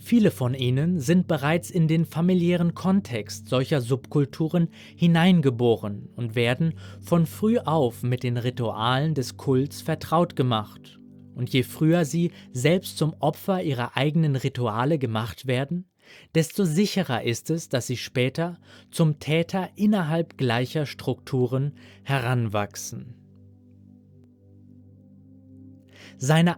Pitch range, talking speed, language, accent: 120-165 Hz, 115 wpm, German, German